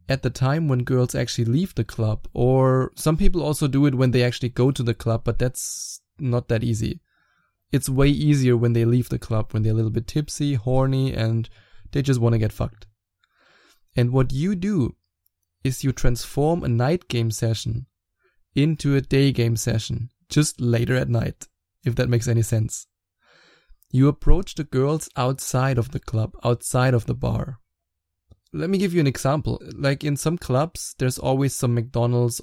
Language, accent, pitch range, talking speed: English, German, 115-135 Hz, 185 wpm